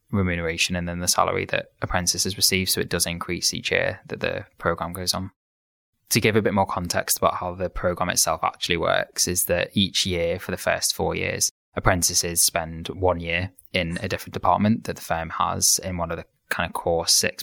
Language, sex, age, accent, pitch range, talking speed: English, male, 20-39, British, 85-95 Hz, 210 wpm